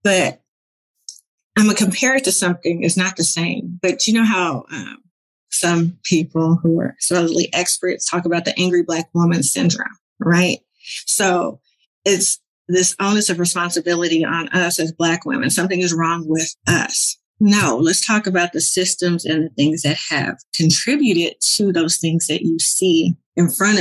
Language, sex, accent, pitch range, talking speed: English, female, American, 165-205 Hz, 170 wpm